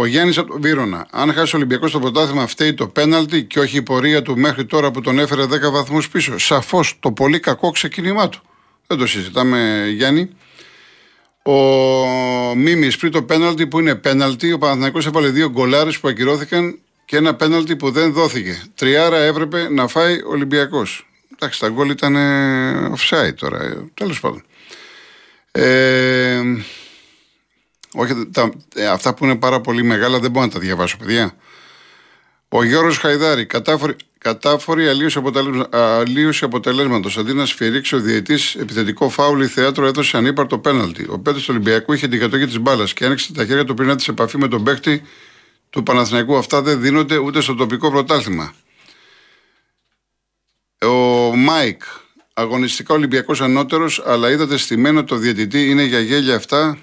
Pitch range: 125-155 Hz